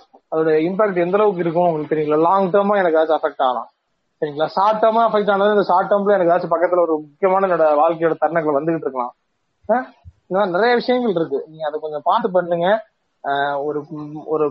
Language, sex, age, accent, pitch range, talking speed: Tamil, male, 30-49, native, 155-205 Hz, 160 wpm